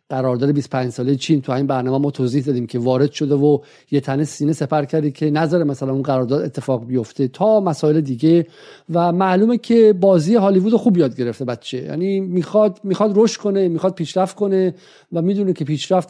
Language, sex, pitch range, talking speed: Persian, male, 135-185 Hz, 185 wpm